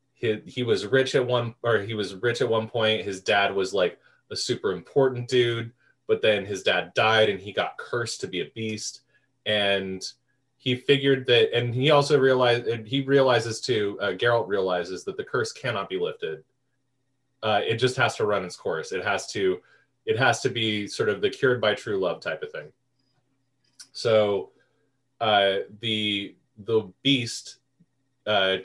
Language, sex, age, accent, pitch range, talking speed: English, male, 20-39, American, 115-140 Hz, 180 wpm